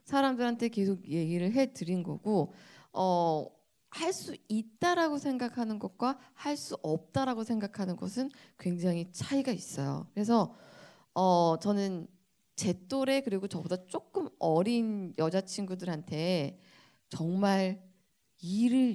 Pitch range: 180-235 Hz